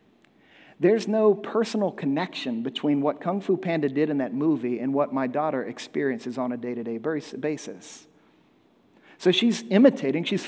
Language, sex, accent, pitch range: English, male, American, 155-200 Hz